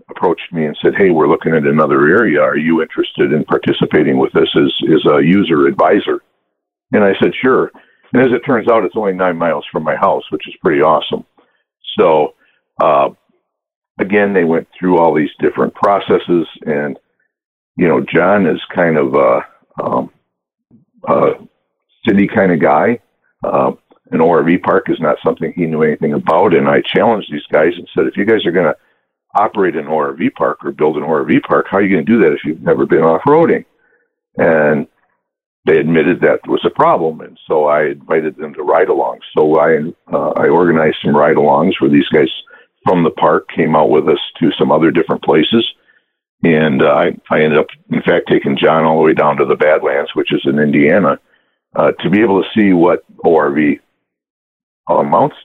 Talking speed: 190 wpm